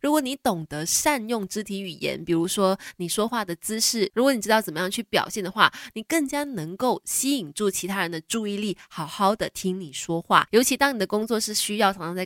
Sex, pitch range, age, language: female, 185-245 Hz, 20-39, Chinese